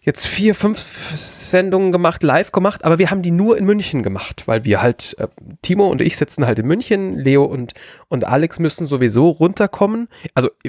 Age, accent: 30-49, German